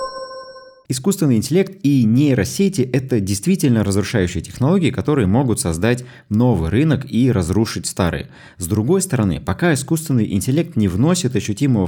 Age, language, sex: 20-39, Russian, male